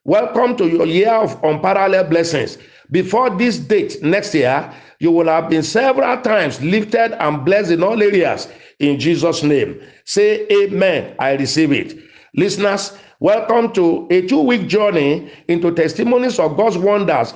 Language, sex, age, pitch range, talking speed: English, male, 50-69, 165-220 Hz, 150 wpm